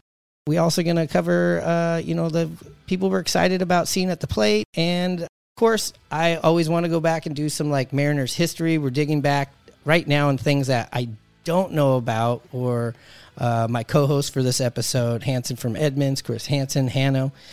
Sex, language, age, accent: male, English, 30-49, American